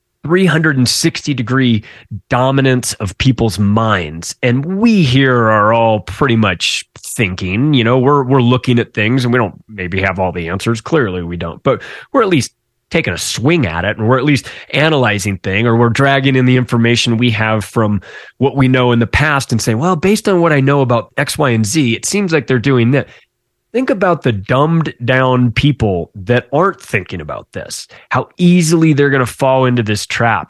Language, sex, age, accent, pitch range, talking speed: English, male, 20-39, American, 115-145 Hz, 200 wpm